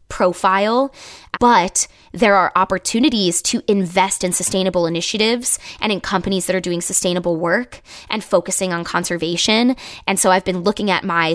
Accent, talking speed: American, 155 wpm